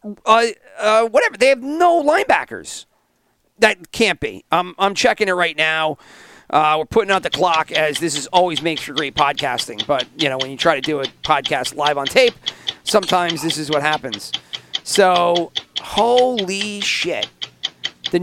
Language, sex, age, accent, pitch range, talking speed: English, male, 40-59, American, 145-195 Hz, 170 wpm